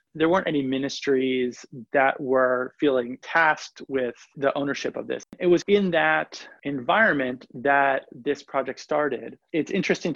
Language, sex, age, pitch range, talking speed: English, male, 30-49, 135-165 Hz, 140 wpm